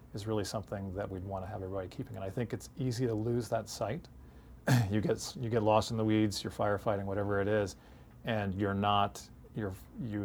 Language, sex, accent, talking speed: English, male, American, 215 wpm